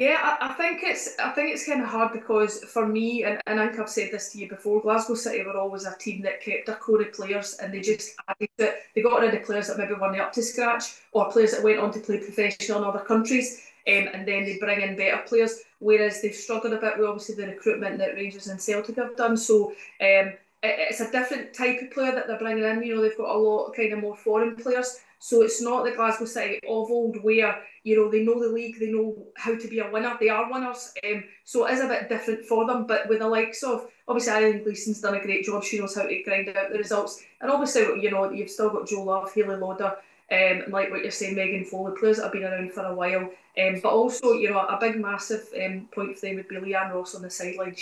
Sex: female